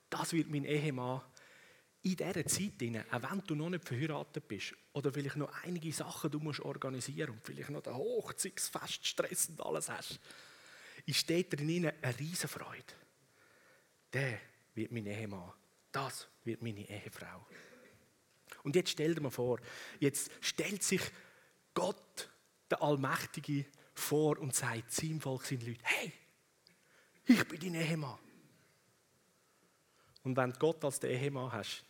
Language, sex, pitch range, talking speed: German, male, 135-170 Hz, 135 wpm